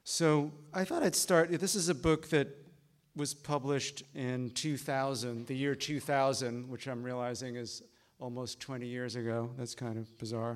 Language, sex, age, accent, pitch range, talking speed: English, male, 50-69, American, 115-130 Hz, 165 wpm